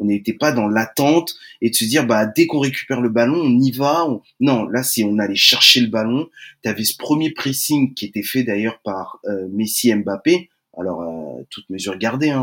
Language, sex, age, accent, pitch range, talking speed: French, male, 20-39, French, 110-170 Hz, 230 wpm